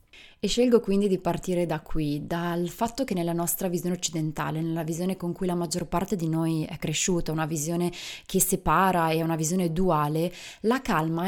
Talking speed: 185 wpm